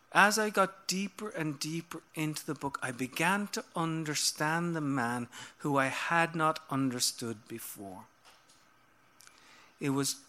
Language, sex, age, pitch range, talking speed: English, male, 50-69, 125-170 Hz, 135 wpm